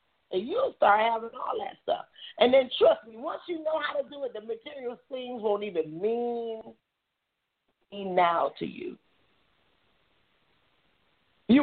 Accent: American